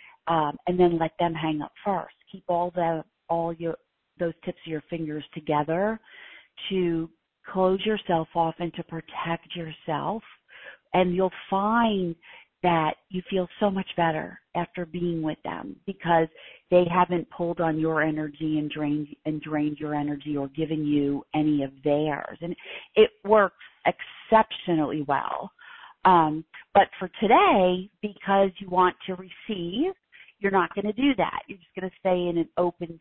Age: 40-59